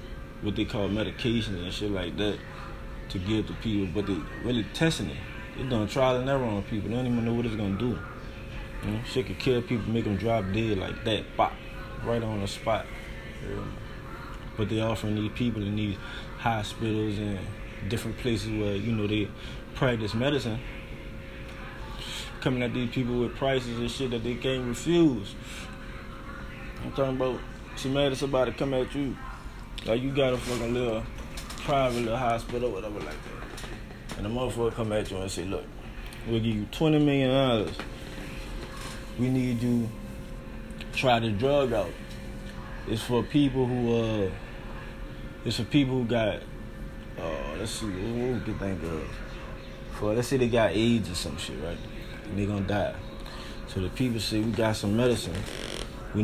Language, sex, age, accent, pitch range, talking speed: English, male, 20-39, American, 105-125 Hz, 175 wpm